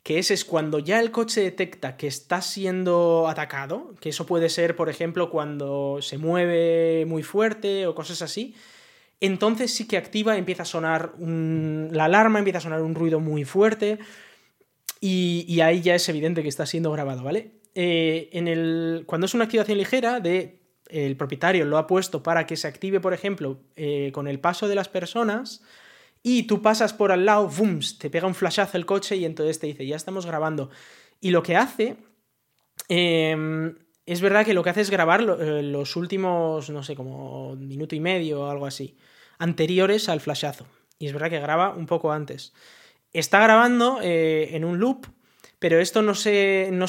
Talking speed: 185 wpm